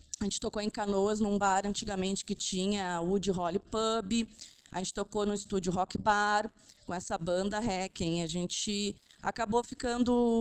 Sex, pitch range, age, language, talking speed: female, 200-255 Hz, 20-39, Portuguese, 160 wpm